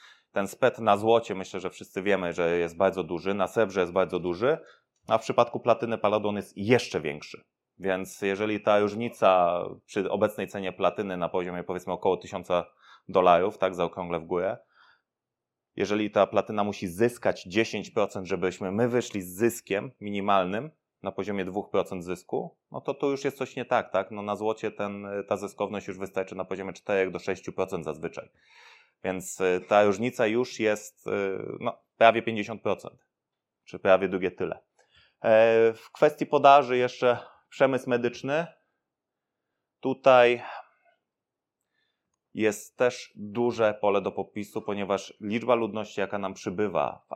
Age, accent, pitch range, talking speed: 20-39, native, 95-115 Hz, 140 wpm